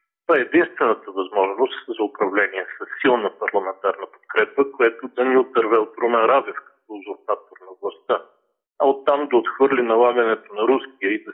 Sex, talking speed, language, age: male, 160 wpm, Bulgarian, 40-59